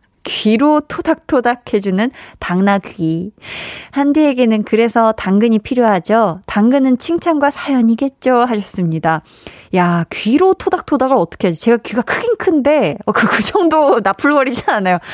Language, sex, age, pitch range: Korean, female, 20-39, 185-260 Hz